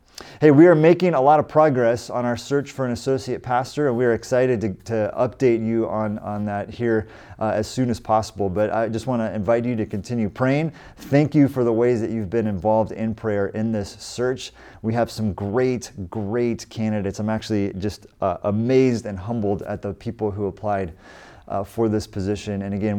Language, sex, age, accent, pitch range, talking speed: English, male, 30-49, American, 105-130 Hz, 210 wpm